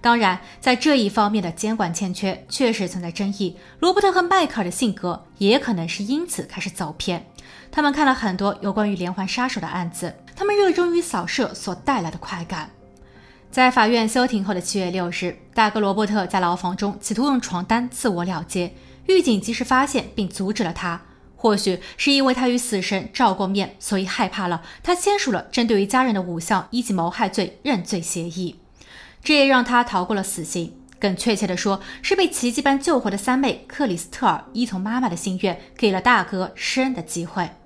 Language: Chinese